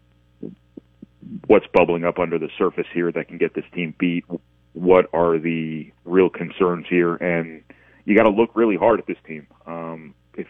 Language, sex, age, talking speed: English, male, 30-49, 175 wpm